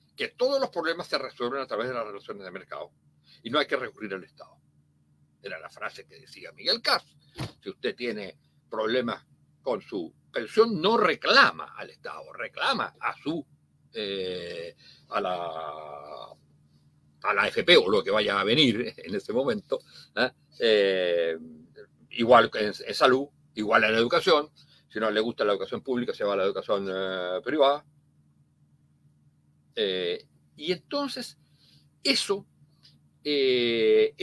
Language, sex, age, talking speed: Spanish, male, 60-79, 150 wpm